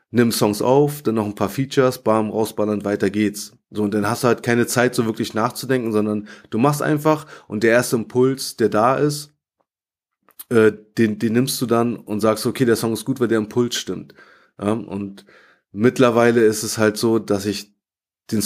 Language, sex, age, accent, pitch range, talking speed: German, male, 30-49, German, 105-125 Hz, 200 wpm